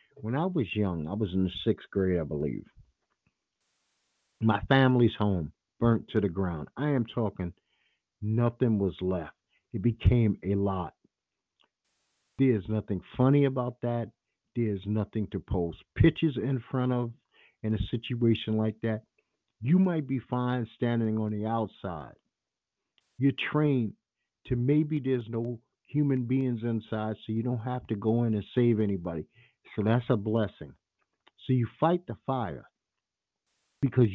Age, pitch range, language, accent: 50-69, 100-125 Hz, English, American